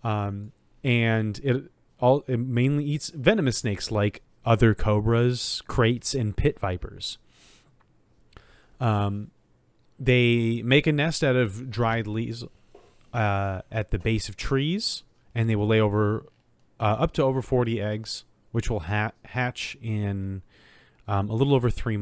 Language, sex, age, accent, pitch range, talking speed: English, male, 30-49, American, 100-120 Hz, 140 wpm